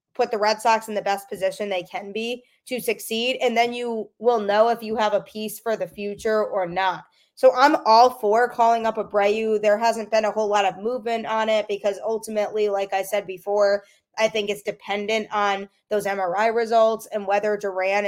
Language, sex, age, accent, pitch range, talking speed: English, female, 20-39, American, 200-225 Hz, 210 wpm